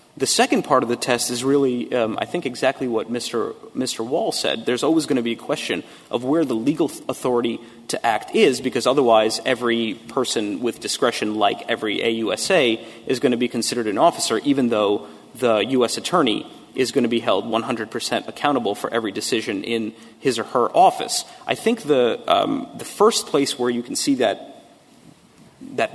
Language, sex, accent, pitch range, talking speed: English, male, American, 115-135 Hz, 185 wpm